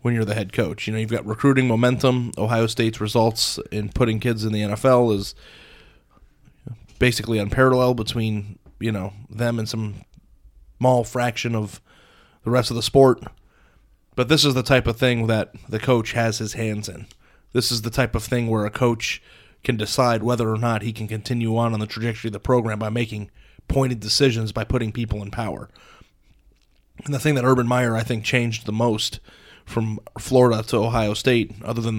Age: 30-49